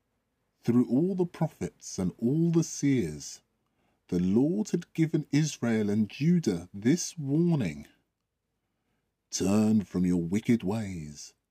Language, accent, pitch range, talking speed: English, British, 95-145 Hz, 115 wpm